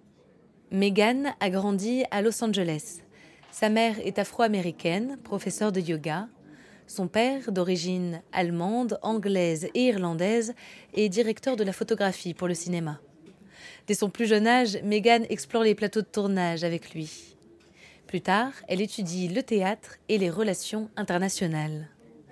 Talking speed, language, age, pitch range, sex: 135 wpm, French, 20-39, 180-225 Hz, female